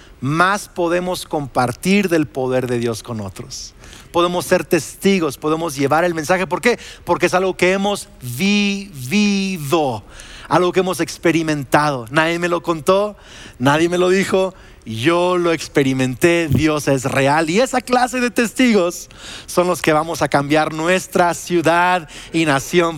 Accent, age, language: Mexican, 40-59, Spanish